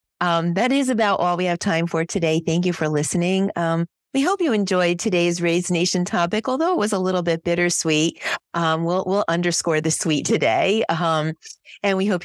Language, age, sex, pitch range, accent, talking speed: English, 40-59, female, 150-205 Hz, American, 200 wpm